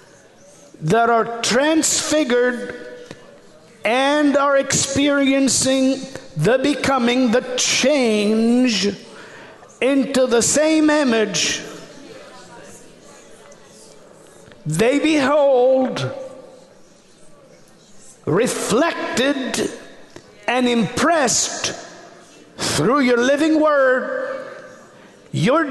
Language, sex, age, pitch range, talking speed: English, male, 50-69, 235-300 Hz, 55 wpm